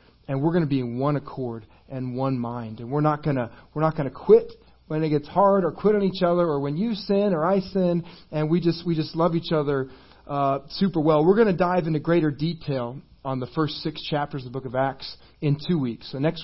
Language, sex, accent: English, male, American